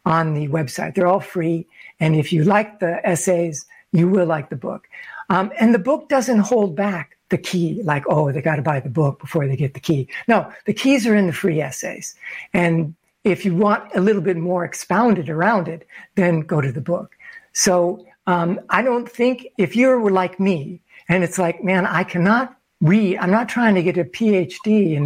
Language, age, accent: English, 60-79, American